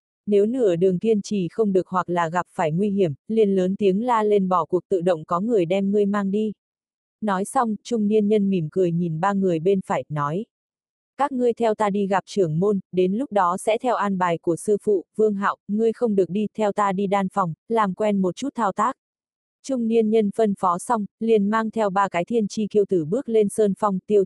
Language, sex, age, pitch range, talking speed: Vietnamese, female, 20-39, 185-220 Hz, 235 wpm